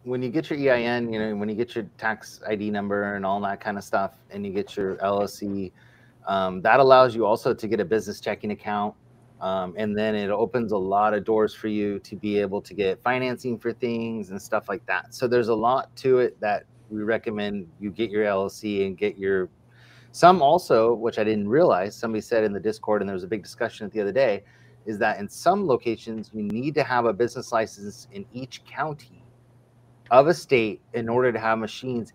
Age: 30-49